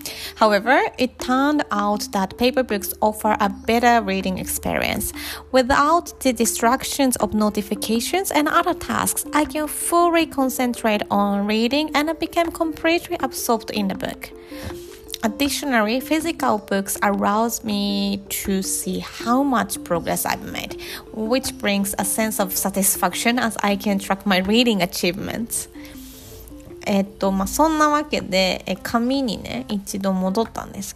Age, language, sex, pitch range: 20-39, Japanese, female, 200-275 Hz